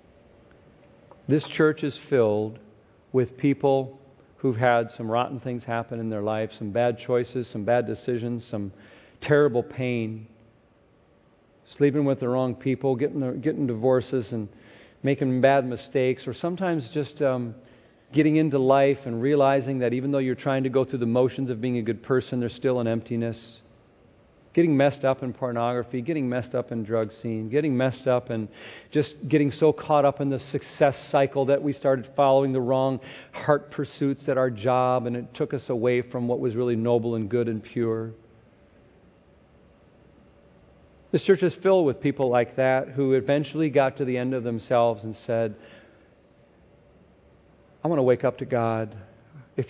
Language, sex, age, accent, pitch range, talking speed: English, male, 40-59, American, 115-140 Hz, 170 wpm